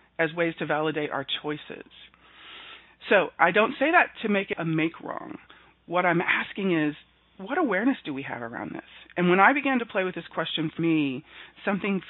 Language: English